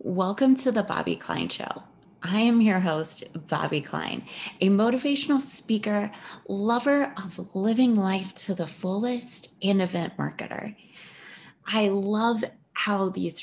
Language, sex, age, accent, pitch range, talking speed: English, female, 20-39, American, 175-220 Hz, 130 wpm